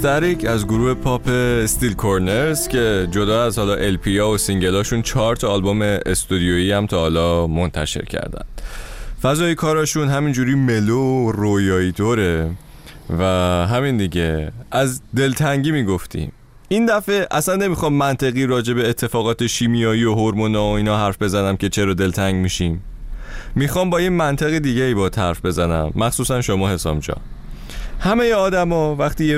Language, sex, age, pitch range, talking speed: Persian, male, 30-49, 90-130 Hz, 145 wpm